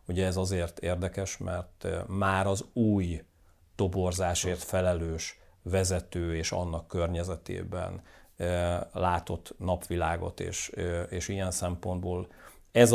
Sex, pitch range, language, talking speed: male, 90-95 Hz, Hungarian, 95 wpm